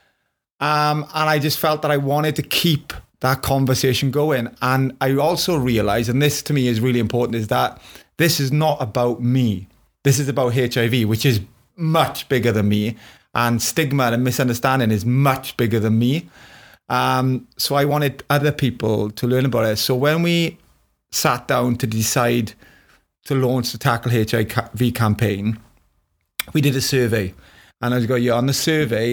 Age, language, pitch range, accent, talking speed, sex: 30-49, English, 115-140 Hz, British, 175 wpm, male